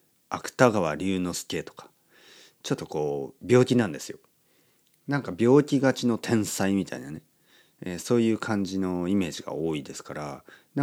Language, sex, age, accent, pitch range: Japanese, male, 40-59, native, 90-150 Hz